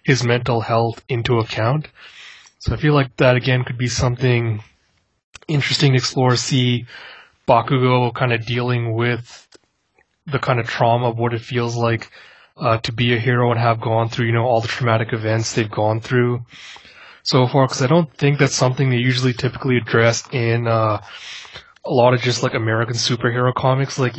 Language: English